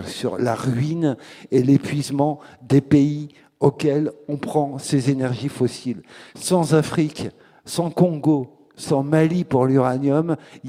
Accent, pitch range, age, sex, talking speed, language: French, 120-145 Hz, 50-69, male, 125 wpm, French